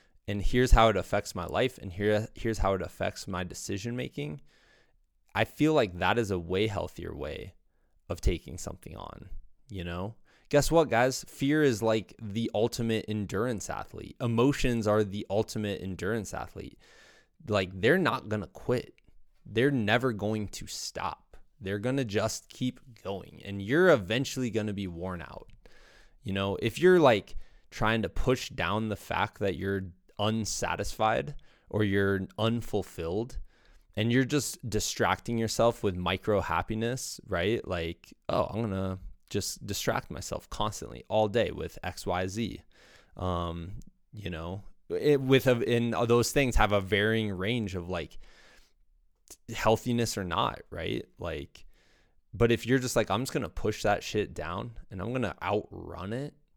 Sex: male